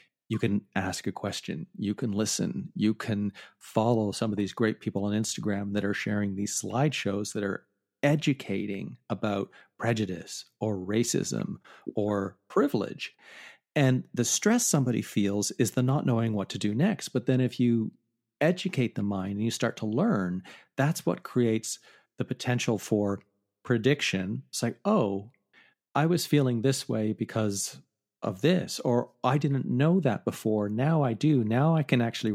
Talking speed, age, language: 165 wpm, 50-69, English